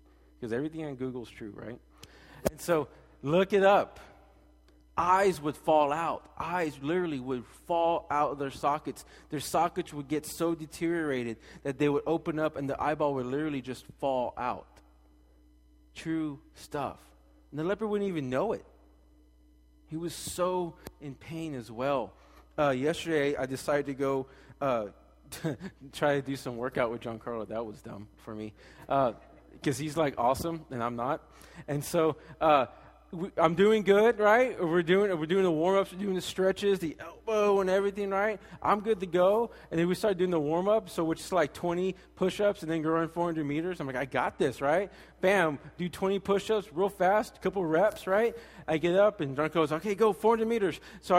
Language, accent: English, American